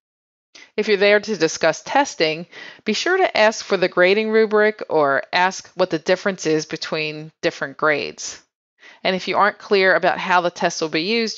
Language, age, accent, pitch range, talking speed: English, 30-49, American, 165-215 Hz, 185 wpm